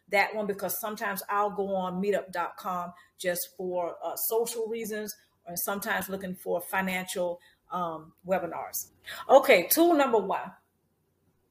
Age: 40-59